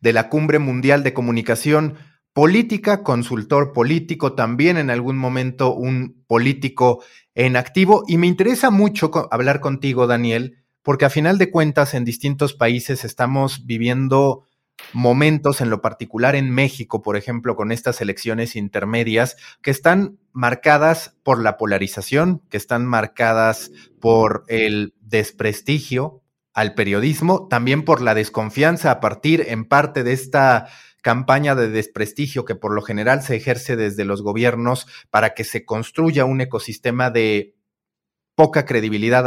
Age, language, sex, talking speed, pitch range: 30-49, Spanish, male, 140 wpm, 115-145 Hz